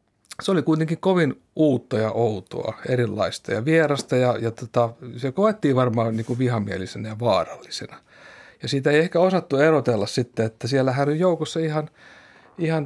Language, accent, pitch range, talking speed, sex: Finnish, native, 120-155 Hz, 155 wpm, male